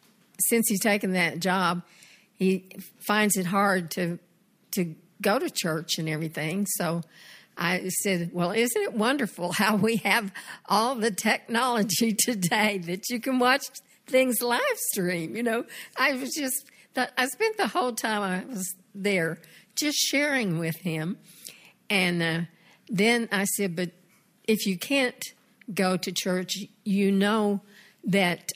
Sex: female